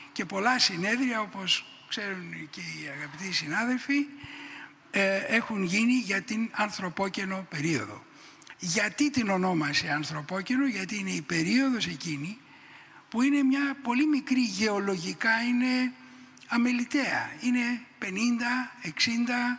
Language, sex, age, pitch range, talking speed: Greek, male, 60-79, 190-255 Hz, 105 wpm